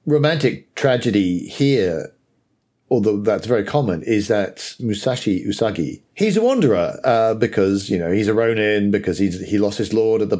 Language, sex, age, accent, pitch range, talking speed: English, male, 50-69, British, 95-125 Hz, 165 wpm